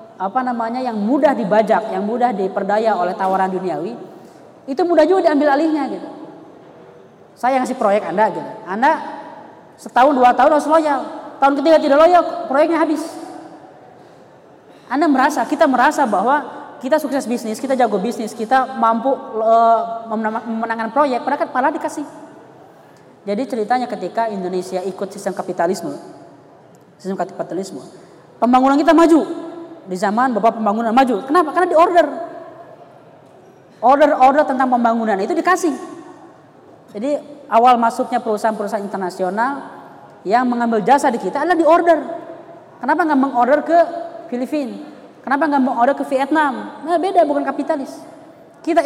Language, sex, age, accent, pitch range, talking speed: Indonesian, female, 20-39, native, 225-310 Hz, 135 wpm